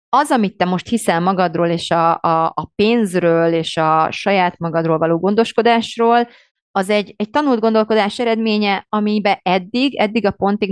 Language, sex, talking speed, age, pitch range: Hungarian, female, 150 wpm, 30-49, 170-220 Hz